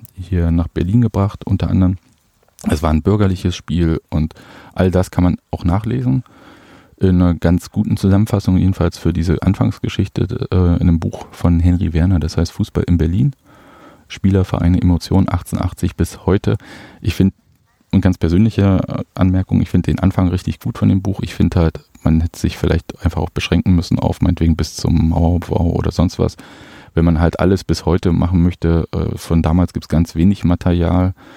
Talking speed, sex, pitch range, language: 180 wpm, male, 80-95 Hz, German